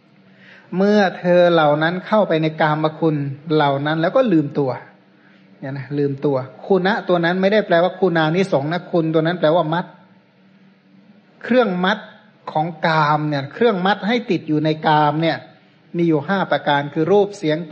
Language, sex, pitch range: Thai, male, 155-190 Hz